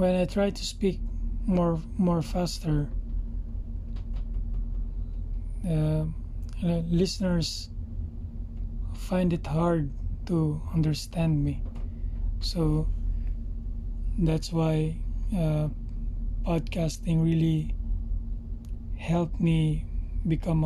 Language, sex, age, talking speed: English, male, 20-39, 75 wpm